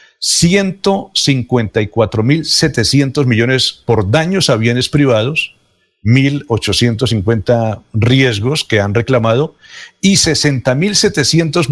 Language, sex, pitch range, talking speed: Spanish, male, 115-150 Hz, 65 wpm